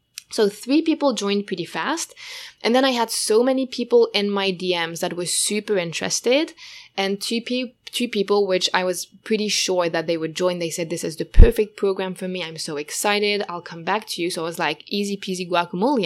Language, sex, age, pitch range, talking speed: English, female, 20-39, 175-215 Hz, 215 wpm